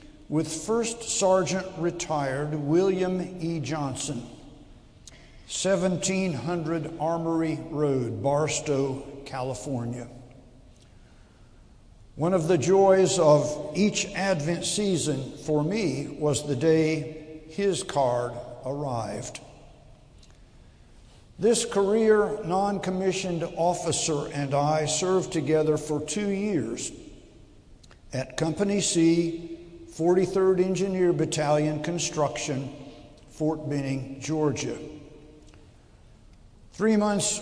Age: 60-79